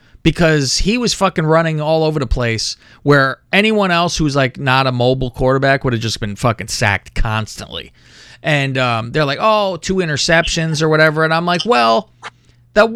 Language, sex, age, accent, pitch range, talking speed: English, male, 30-49, American, 120-165 Hz, 180 wpm